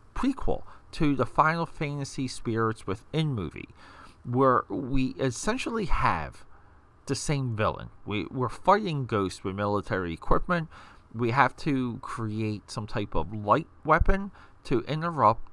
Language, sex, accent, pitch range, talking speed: English, male, American, 95-130 Hz, 125 wpm